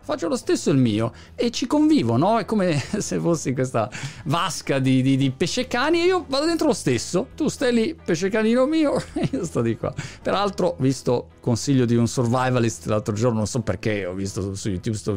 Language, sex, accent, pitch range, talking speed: Italian, male, native, 115-170 Hz, 210 wpm